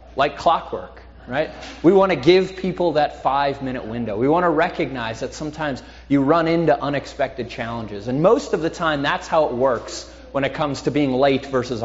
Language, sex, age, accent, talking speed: English, male, 30-49, American, 190 wpm